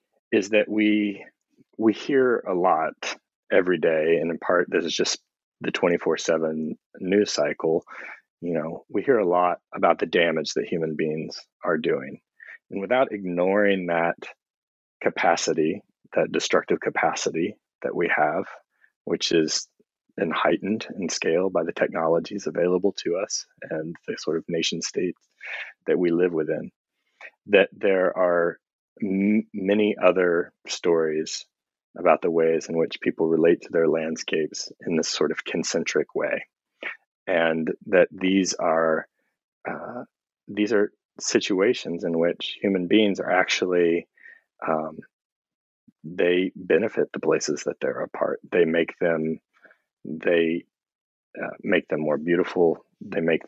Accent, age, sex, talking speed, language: American, 30-49, male, 135 wpm, English